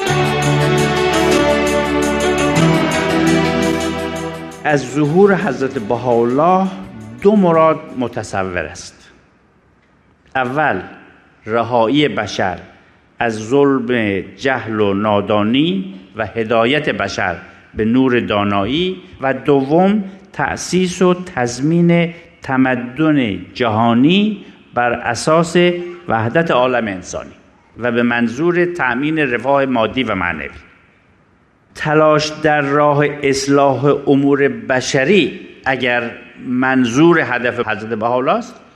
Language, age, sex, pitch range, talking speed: Persian, 50-69, male, 110-150 Hz, 85 wpm